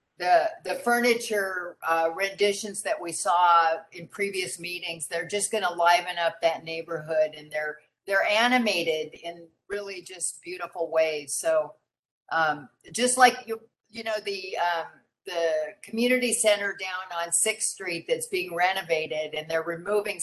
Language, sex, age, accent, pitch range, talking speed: English, female, 50-69, American, 170-220 Hz, 145 wpm